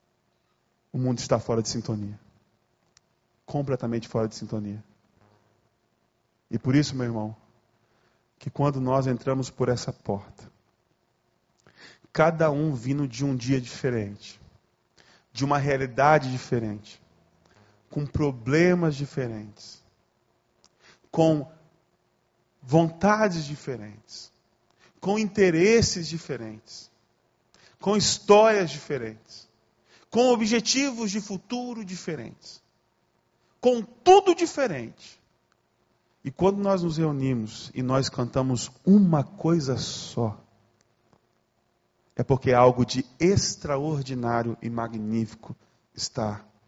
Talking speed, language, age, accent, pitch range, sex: 95 wpm, Portuguese, 20-39, Brazilian, 115-165 Hz, male